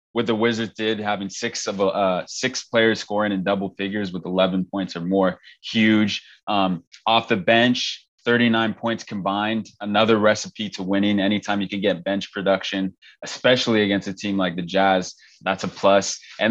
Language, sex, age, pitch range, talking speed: English, male, 20-39, 95-115 Hz, 180 wpm